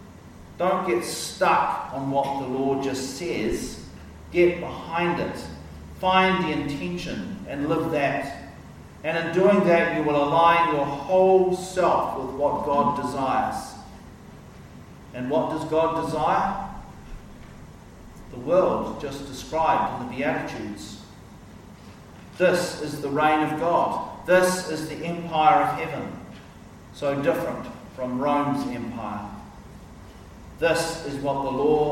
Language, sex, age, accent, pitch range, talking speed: English, male, 40-59, Australian, 125-160 Hz, 125 wpm